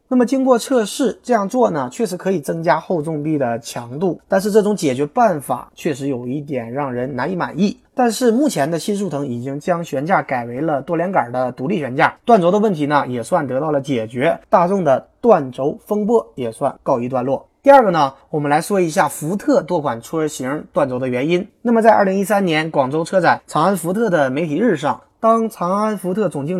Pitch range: 140-210 Hz